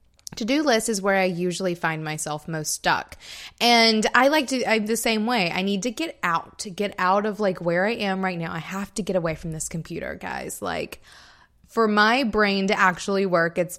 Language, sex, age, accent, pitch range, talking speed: English, female, 20-39, American, 170-215 Hz, 220 wpm